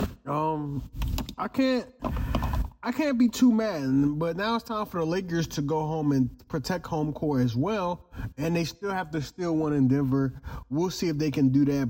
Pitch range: 130-175 Hz